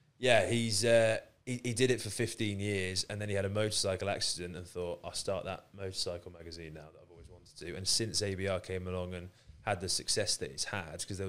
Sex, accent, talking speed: male, British, 235 wpm